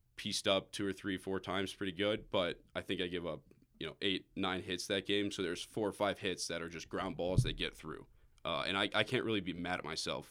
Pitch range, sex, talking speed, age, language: 85-95 Hz, male, 270 wpm, 20-39, English